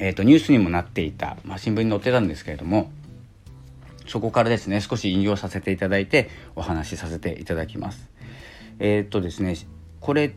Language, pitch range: Japanese, 85-115 Hz